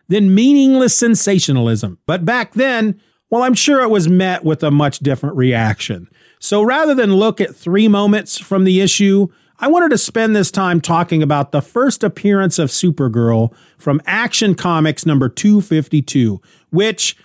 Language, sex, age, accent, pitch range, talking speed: English, male, 40-59, American, 145-215 Hz, 160 wpm